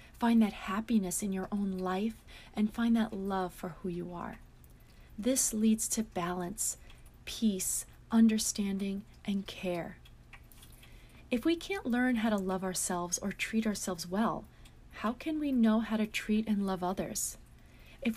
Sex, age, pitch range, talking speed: female, 30-49, 185-230 Hz, 150 wpm